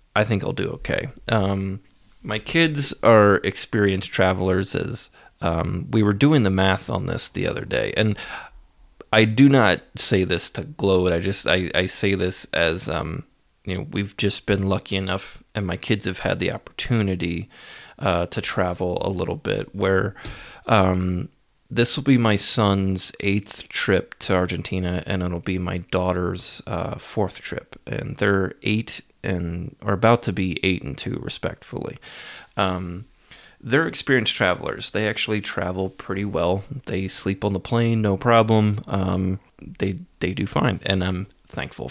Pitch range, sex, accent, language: 95-110 Hz, male, American, English